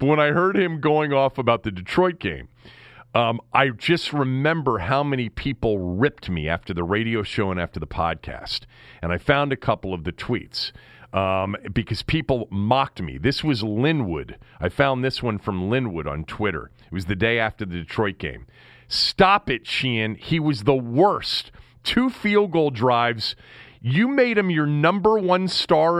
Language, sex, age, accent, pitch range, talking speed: English, male, 40-59, American, 100-145 Hz, 180 wpm